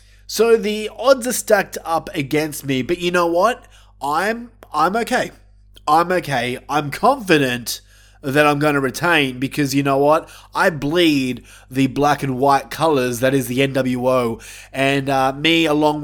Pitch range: 125-170 Hz